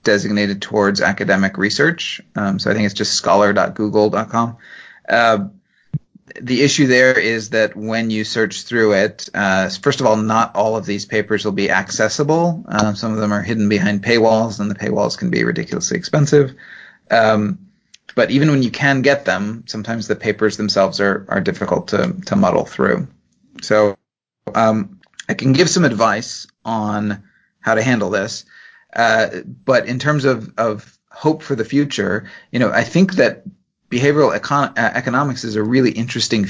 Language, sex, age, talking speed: English, male, 30-49, 165 wpm